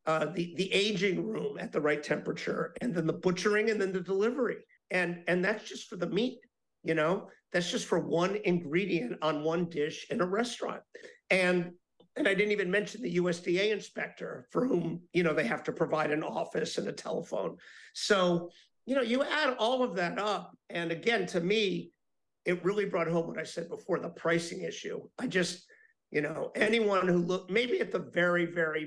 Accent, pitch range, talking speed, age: American, 165-205 Hz, 195 wpm, 50-69